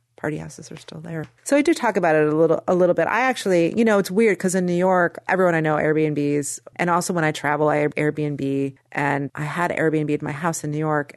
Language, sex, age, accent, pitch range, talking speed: English, female, 30-49, American, 145-175 Hz, 255 wpm